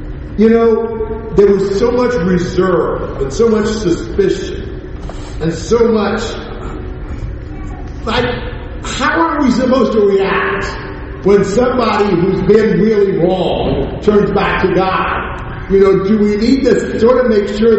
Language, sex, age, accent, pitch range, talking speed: English, male, 50-69, American, 165-215 Hz, 140 wpm